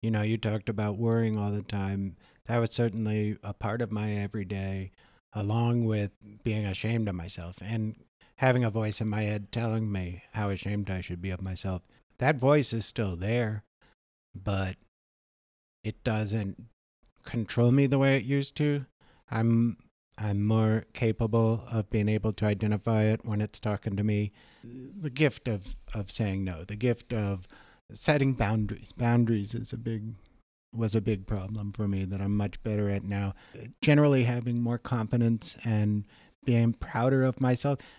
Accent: American